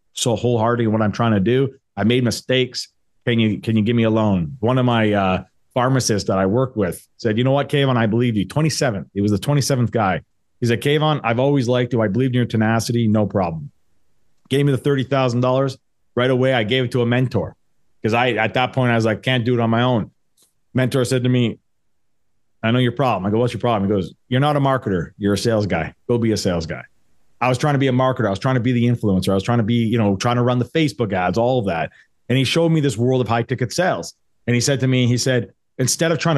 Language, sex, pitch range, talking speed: English, male, 110-135 Hz, 265 wpm